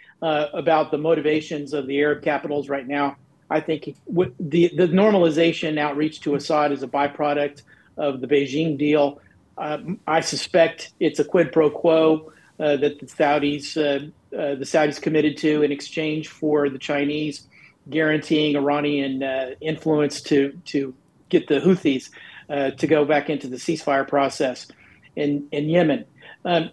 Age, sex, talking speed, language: 40-59, male, 155 wpm, English